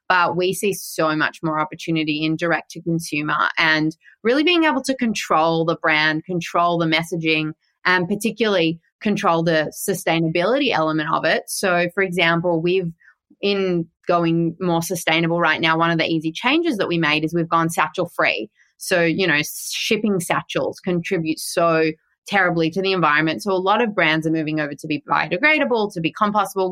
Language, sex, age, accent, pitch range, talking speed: English, female, 20-39, Australian, 165-200 Hz, 175 wpm